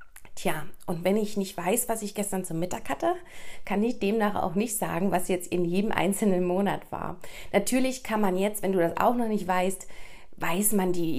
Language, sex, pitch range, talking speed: German, female, 180-220 Hz, 210 wpm